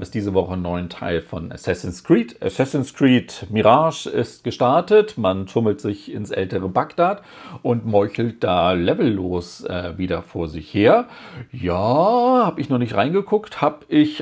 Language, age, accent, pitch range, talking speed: German, 40-59, German, 110-155 Hz, 150 wpm